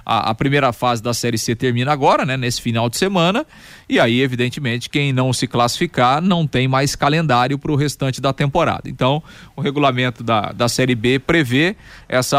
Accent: Brazilian